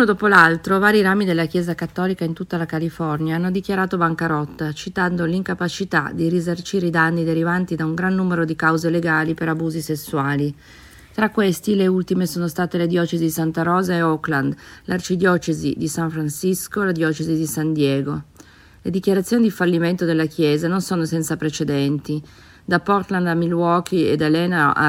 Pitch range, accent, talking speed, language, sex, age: 160-180 Hz, native, 175 wpm, Italian, female, 40-59